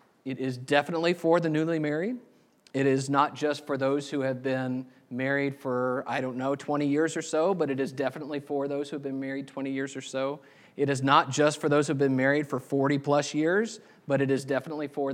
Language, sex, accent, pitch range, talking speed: English, male, American, 135-160 Hz, 230 wpm